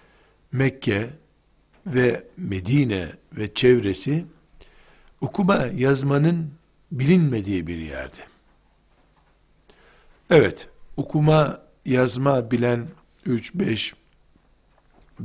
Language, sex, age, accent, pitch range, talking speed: Turkish, male, 60-79, native, 120-160 Hz, 60 wpm